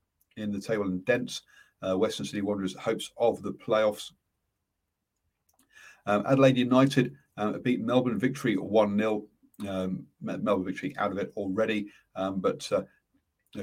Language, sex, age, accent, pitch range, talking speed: English, male, 40-59, British, 95-125 Hz, 140 wpm